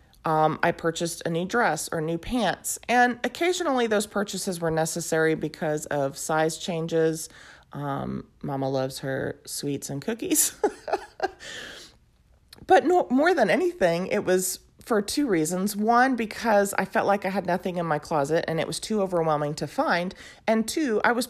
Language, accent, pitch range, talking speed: English, American, 160-235 Hz, 160 wpm